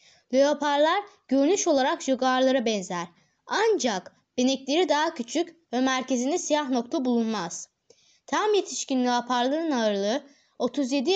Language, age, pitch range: Turkish, 20-39, 240-305 Hz